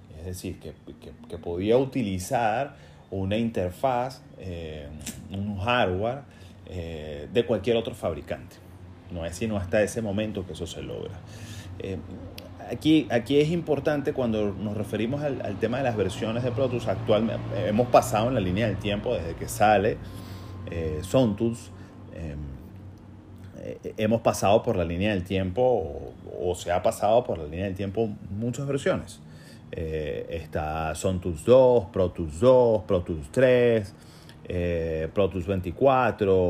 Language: Spanish